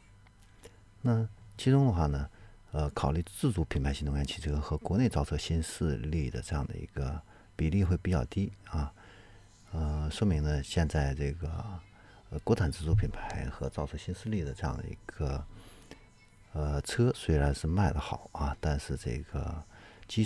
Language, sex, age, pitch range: Chinese, male, 50-69, 75-100 Hz